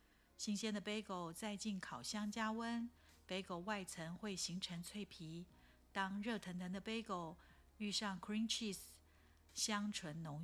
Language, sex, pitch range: Chinese, female, 165-210 Hz